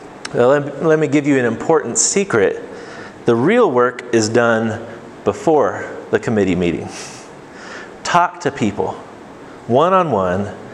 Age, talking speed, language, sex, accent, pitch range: 30-49, 115 wpm, English, male, American, 115-150 Hz